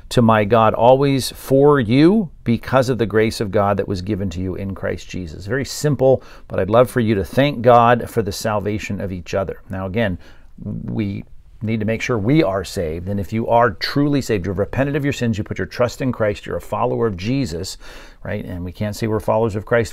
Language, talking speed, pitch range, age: English, 230 wpm, 100-125 Hz, 50-69